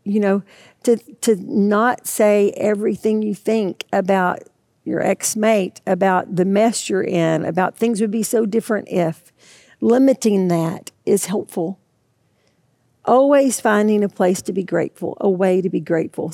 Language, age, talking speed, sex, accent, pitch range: English, 50-69, 145 wpm, female, American, 185-215 Hz